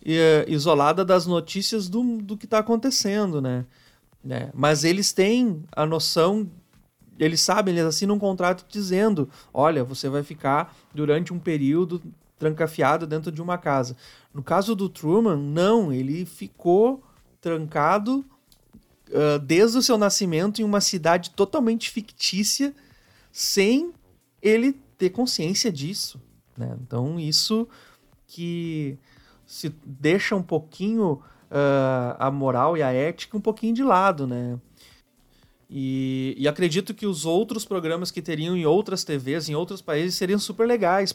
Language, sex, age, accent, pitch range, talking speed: Portuguese, male, 30-49, Brazilian, 145-195 Hz, 135 wpm